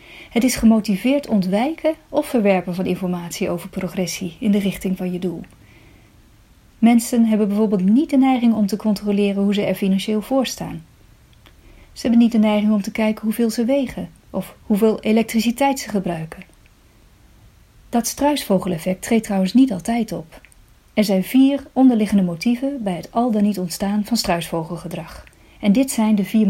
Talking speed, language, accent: 165 wpm, Dutch, Dutch